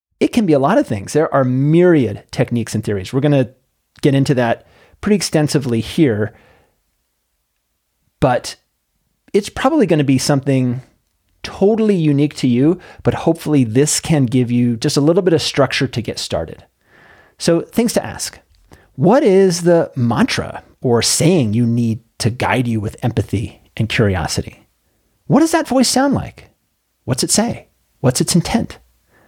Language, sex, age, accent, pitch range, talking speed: English, male, 30-49, American, 115-155 Hz, 160 wpm